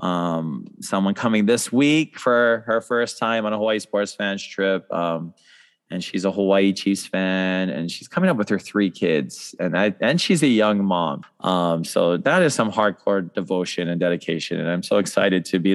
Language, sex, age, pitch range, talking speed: English, male, 20-39, 90-110 Hz, 200 wpm